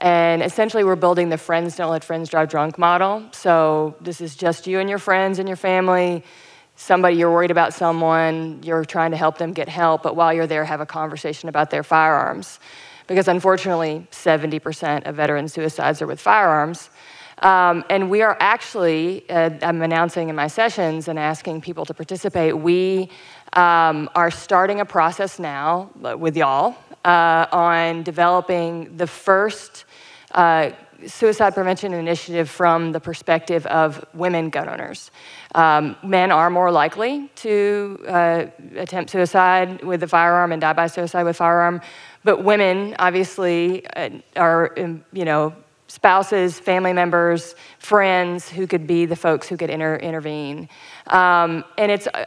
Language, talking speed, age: English, 155 wpm, 30-49